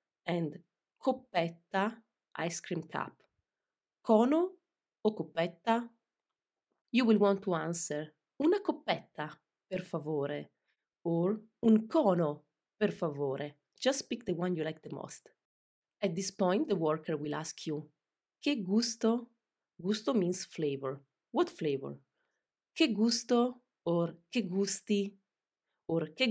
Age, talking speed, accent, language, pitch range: 30-49, 120 wpm, native, Italian, 155-225 Hz